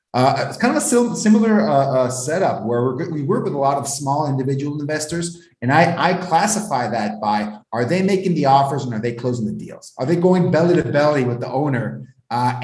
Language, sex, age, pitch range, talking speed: English, male, 30-49, 125-180 Hz, 225 wpm